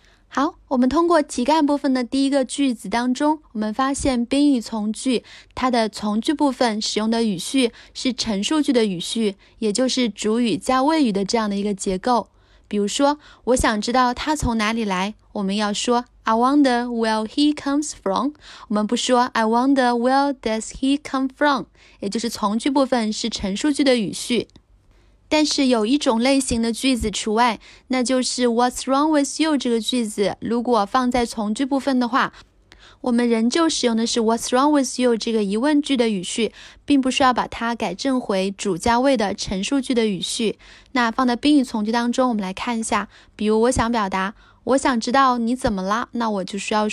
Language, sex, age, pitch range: Chinese, female, 20-39, 225-275 Hz